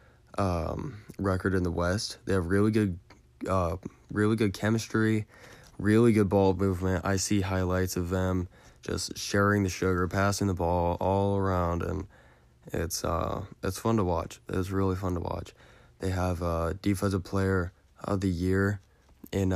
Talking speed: 165 wpm